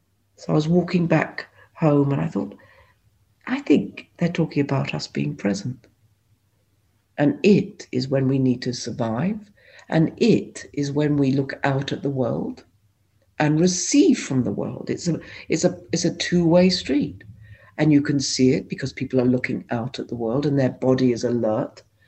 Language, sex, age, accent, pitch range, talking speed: English, female, 60-79, British, 105-150 Hz, 180 wpm